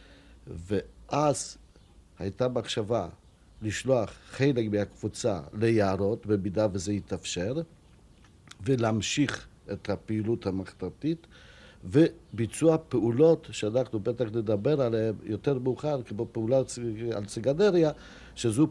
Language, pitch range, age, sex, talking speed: Hebrew, 100-125 Hz, 50-69, male, 85 wpm